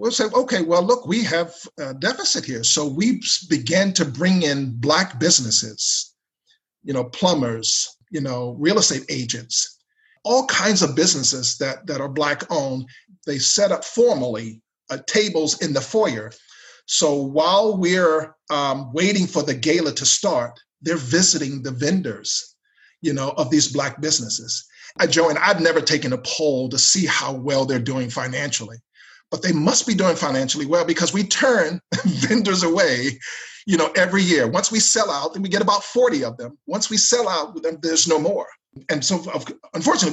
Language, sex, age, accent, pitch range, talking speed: English, male, 50-69, American, 140-195 Hz, 170 wpm